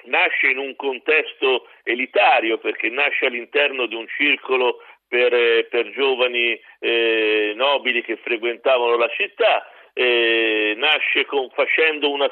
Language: Italian